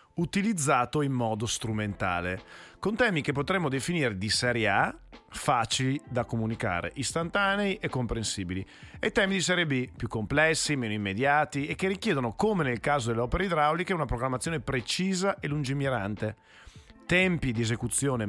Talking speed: 145 wpm